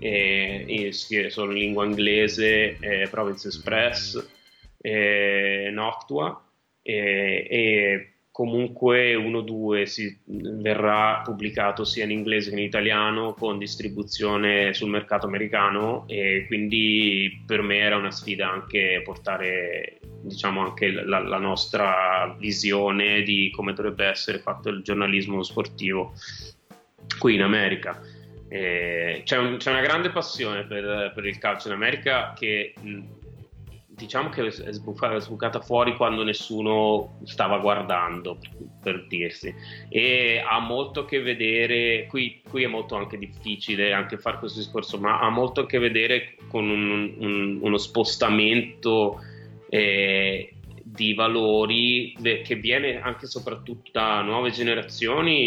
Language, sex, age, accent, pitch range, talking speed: Italian, male, 20-39, native, 100-115 Hz, 130 wpm